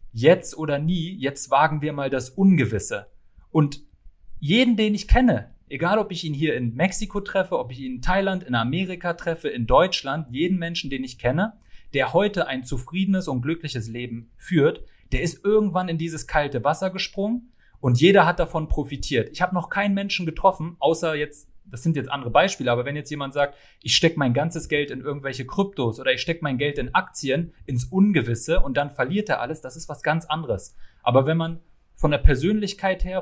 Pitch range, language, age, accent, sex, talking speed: 130-175 Hz, German, 30-49, German, male, 200 wpm